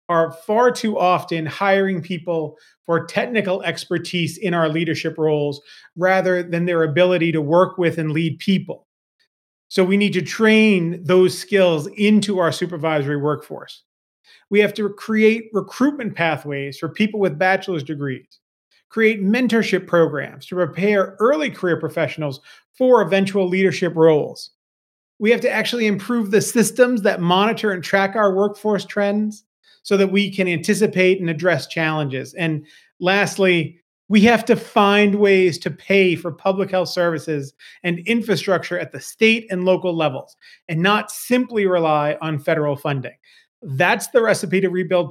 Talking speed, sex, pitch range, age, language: 150 wpm, male, 165-205 Hz, 40-59, English